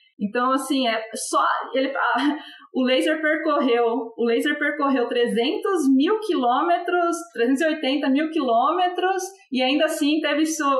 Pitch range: 230-300 Hz